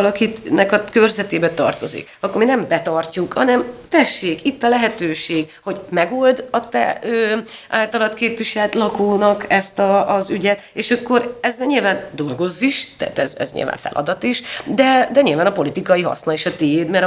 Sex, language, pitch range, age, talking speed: female, Hungarian, 160-210 Hz, 30-49, 165 wpm